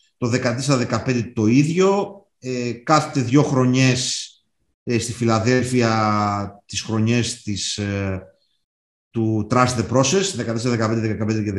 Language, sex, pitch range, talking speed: Greek, male, 110-135 Hz, 105 wpm